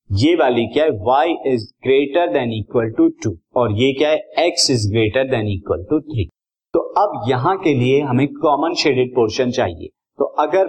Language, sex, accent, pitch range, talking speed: Hindi, male, native, 110-150 Hz, 180 wpm